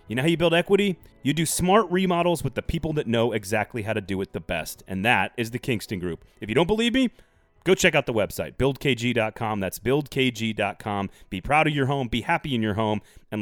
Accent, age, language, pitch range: American, 30-49, English, 110-155 Hz